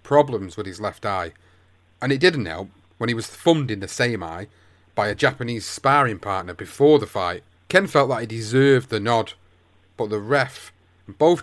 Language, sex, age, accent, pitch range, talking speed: English, male, 30-49, British, 100-135 Hz, 200 wpm